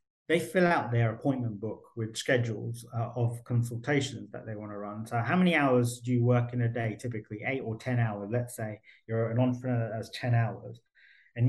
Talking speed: 215 wpm